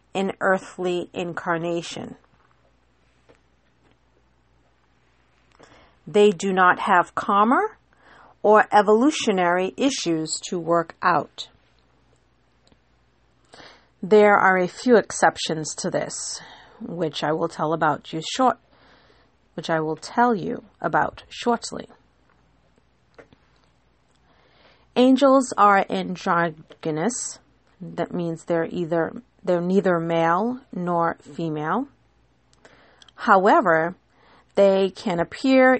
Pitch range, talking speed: 165-225 Hz, 85 wpm